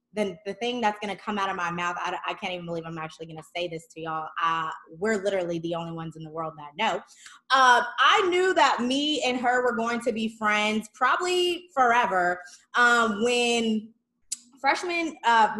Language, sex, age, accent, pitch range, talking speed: English, female, 20-39, American, 185-240 Hz, 210 wpm